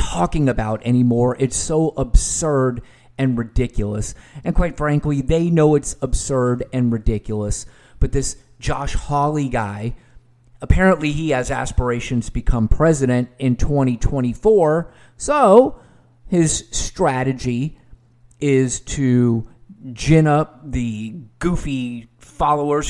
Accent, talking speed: American, 105 wpm